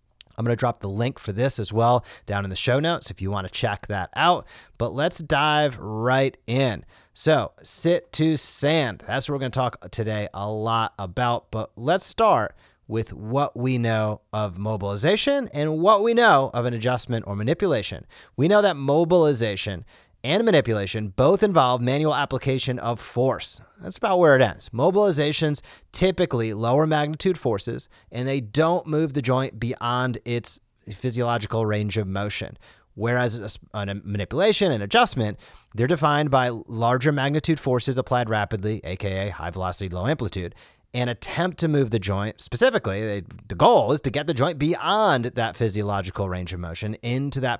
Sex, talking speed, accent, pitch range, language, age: male, 170 wpm, American, 105-145 Hz, English, 30-49